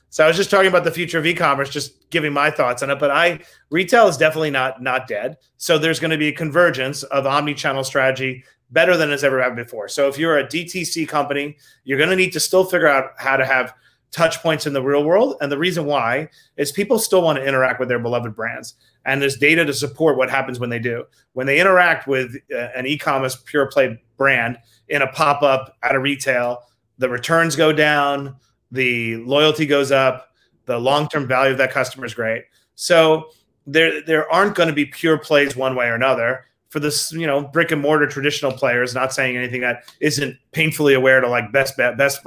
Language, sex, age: English, male, 30-49